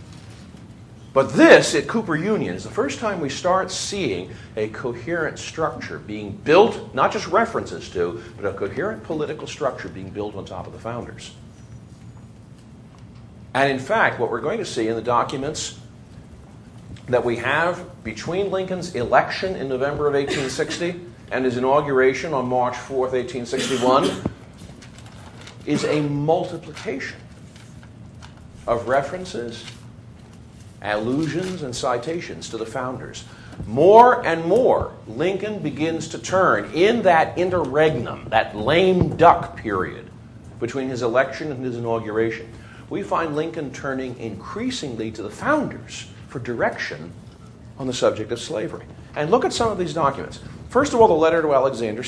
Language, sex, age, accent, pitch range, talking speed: English, male, 50-69, American, 115-155 Hz, 140 wpm